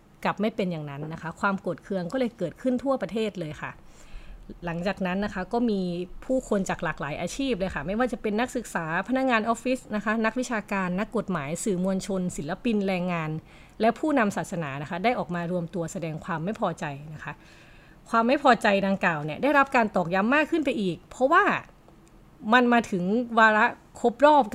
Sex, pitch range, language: female, 175-230 Hz, Thai